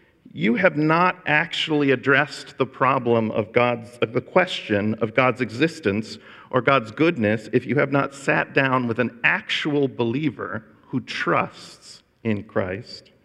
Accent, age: American, 50-69